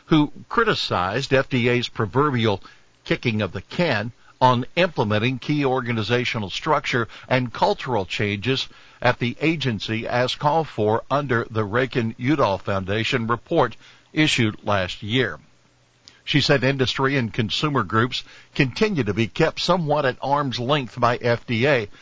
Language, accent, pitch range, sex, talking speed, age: English, American, 110-140 Hz, male, 125 wpm, 60-79